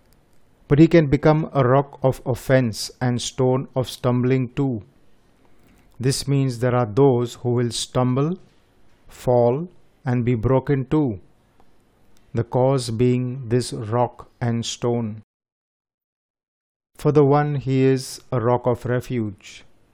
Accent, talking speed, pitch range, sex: native, 125 wpm, 115-130 Hz, male